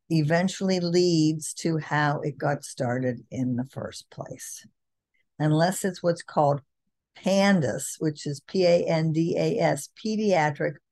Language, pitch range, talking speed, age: English, 145-175 Hz, 110 wpm, 50-69